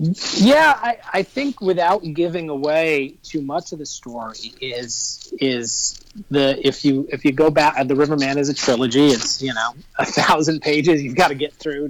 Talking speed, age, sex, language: 185 wpm, 30-49, male, English